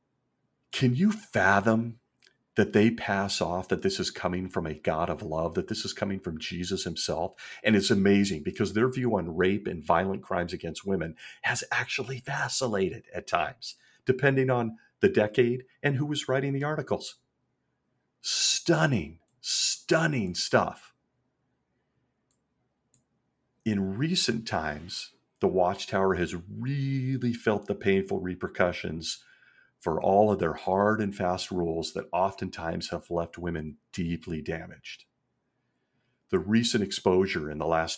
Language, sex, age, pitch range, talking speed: English, male, 40-59, 90-120 Hz, 135 wpm